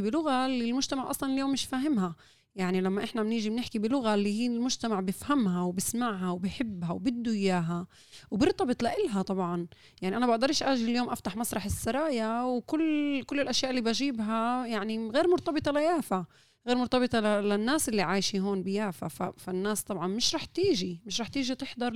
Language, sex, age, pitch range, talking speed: Arabic, female, 20-39, 185-235 Hz, 160 wpm